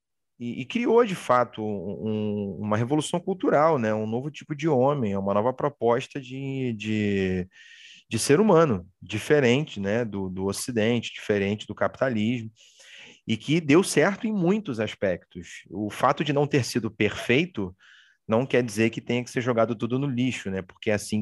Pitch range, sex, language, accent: 105-125 Hz, male, Portuguese, Brazilian